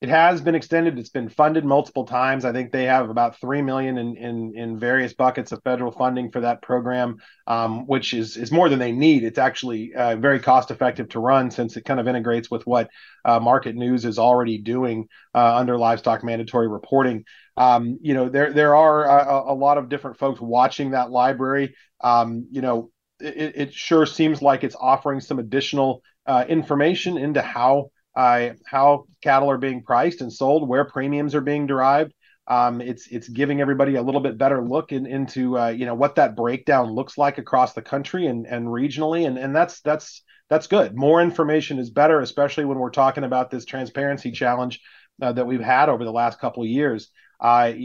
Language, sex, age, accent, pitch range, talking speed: English, male, 30-49, American, 120-140 Hz, 195 wpm